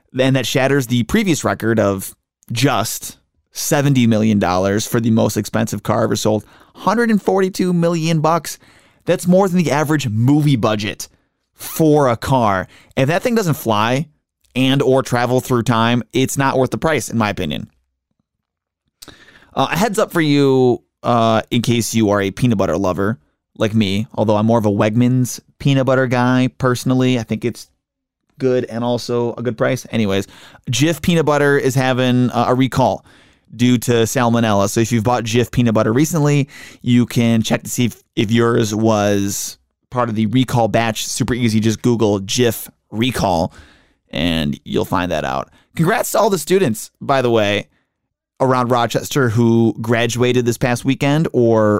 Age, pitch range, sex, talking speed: 20-39, 110-135 Hz, male, 170 wpm